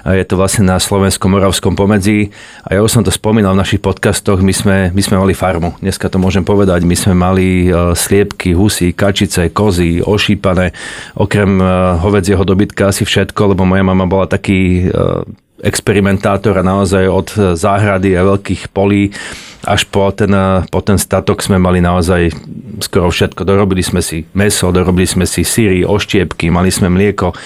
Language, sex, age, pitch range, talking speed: Slovak, male, 30-49, 90-100 Hz, 165 wpm